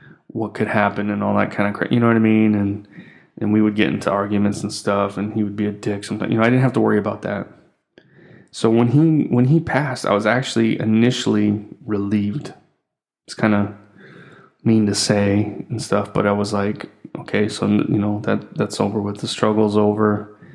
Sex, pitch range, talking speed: male, 100-110 Hz, 215 wpm